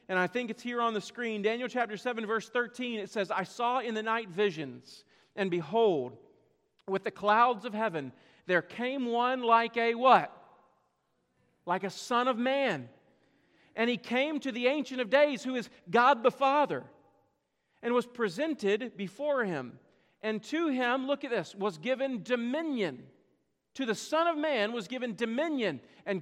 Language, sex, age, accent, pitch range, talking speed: English, male, 40-59, American, 215-270 Hz, 170 wpm